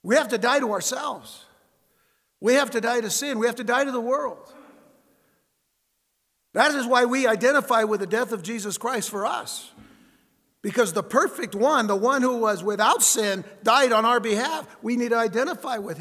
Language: English